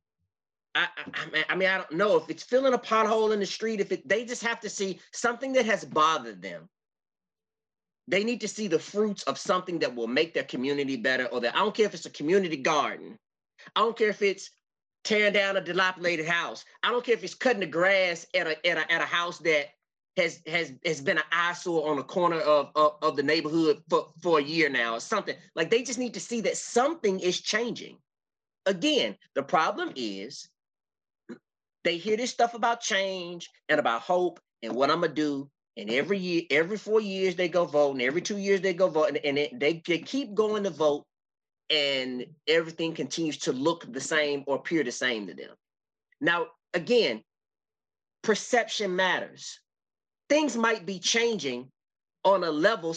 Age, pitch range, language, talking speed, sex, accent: 30-49, 155-215 Hz, English, 195 wpm, male, American